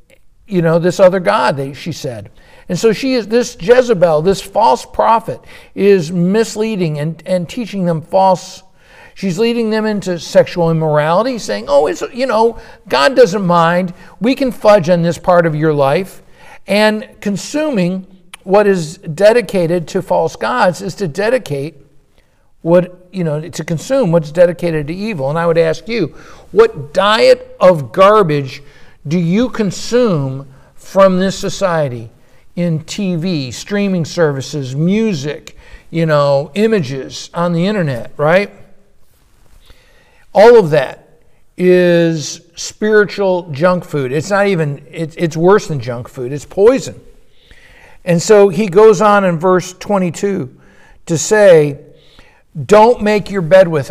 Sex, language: male, English